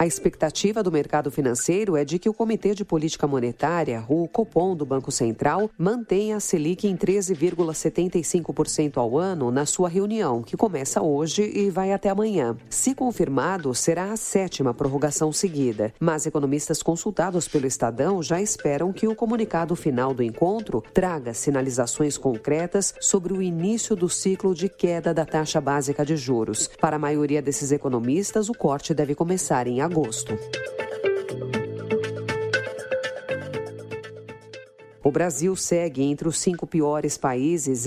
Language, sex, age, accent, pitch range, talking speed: Portuguese, female, 40-59, Brazilian, 145-195 Hz, 140 wpm